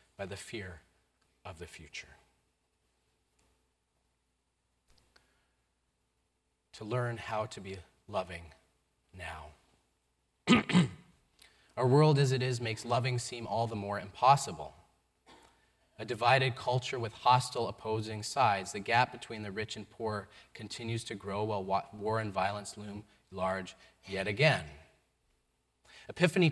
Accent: American